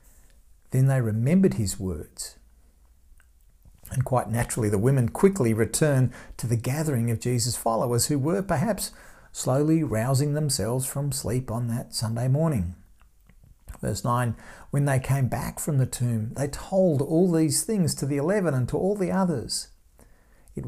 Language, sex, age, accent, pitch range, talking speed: English, male, 50-69, Australian, 105-145 Hz, 155 wpm